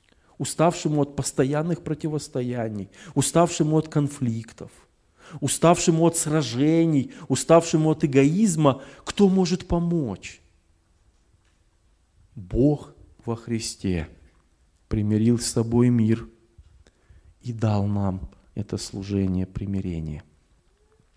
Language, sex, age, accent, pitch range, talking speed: Russian, male, 40-59, native, 100-160 Hz, 80 wpm